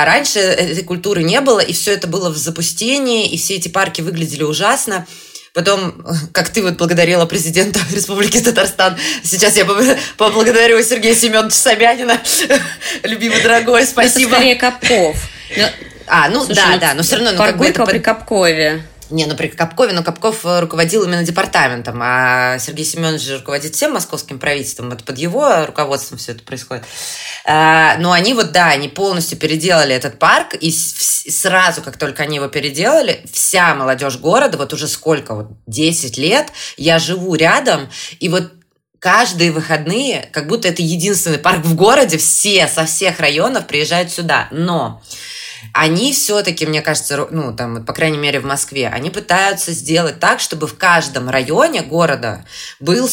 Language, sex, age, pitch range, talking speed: Russian, female, 20-39, 150-195 Hz, 155 wpm